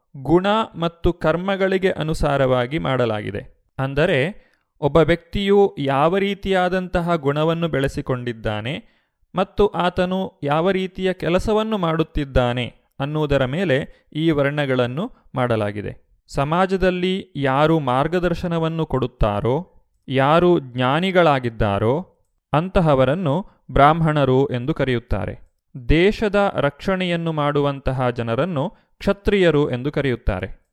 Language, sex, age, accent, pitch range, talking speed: Kannada, male, 30-49, native, 135-180 Hz, 80 wpm